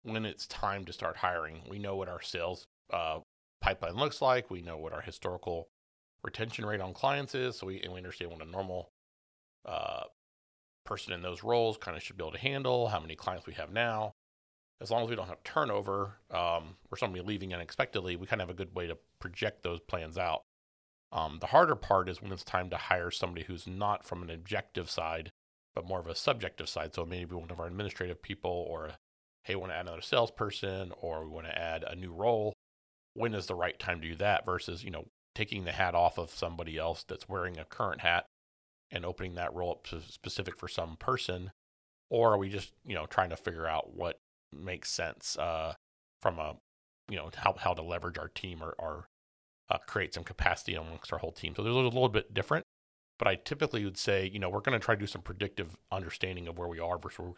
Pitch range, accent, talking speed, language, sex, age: 80-100 Hz, American, 230 wpm, English, male, 40-59